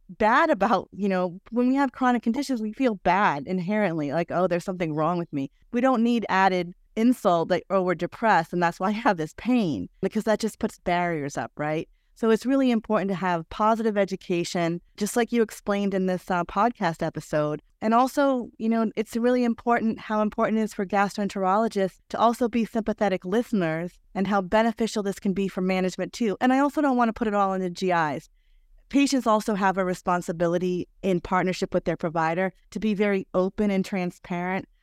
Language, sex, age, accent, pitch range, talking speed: English, female, 30-49, American, 180-225 Hz, 200 wpm